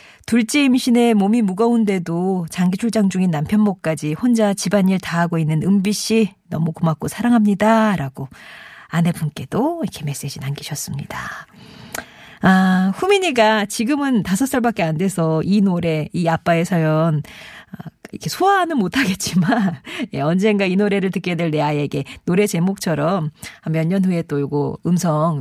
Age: 40-59